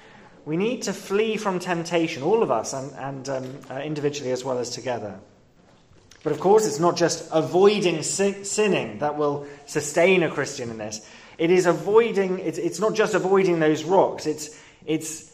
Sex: male